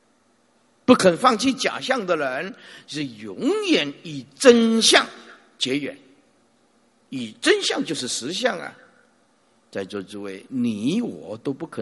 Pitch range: 155-245 Hz